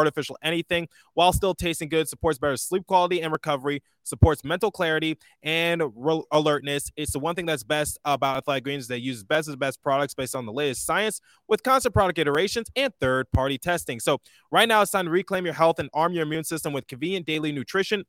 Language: English